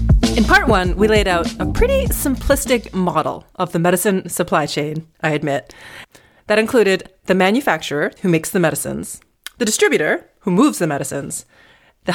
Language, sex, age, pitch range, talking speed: English, female, 30-49, 150-215 Hz, 160 wpm